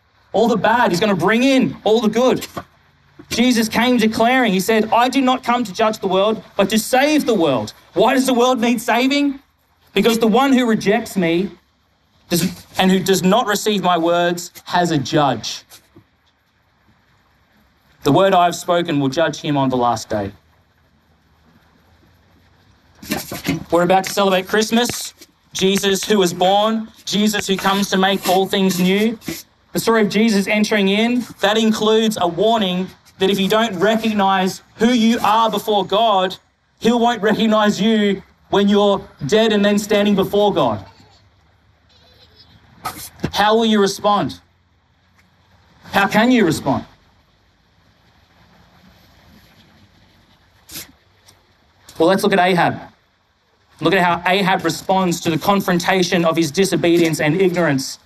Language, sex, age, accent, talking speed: English, male, 30-49, Australian, 145 wpm